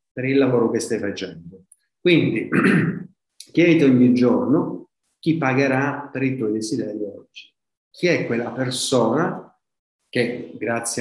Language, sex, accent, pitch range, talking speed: Italian, male, native, 115-140 Hz, 125 wpm